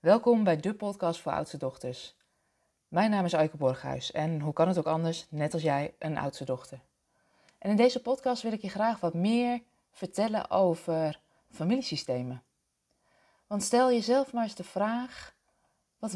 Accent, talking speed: Dutch, 165 wpm